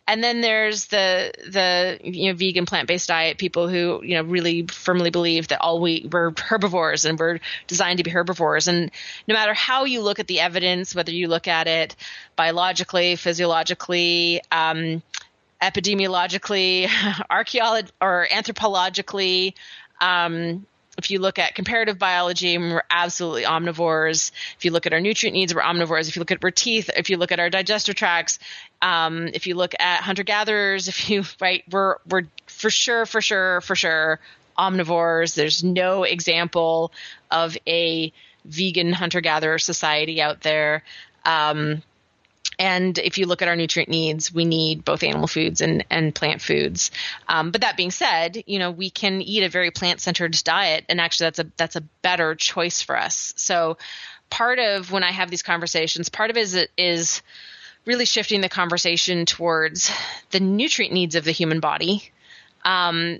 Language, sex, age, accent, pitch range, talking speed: English, female, 30-49, American, 165-190 Hz, 170 wpm